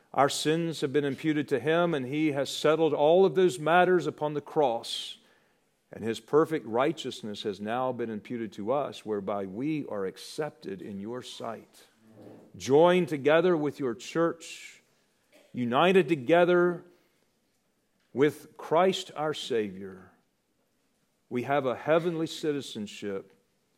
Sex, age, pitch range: male, 50-69, 115-155 Hz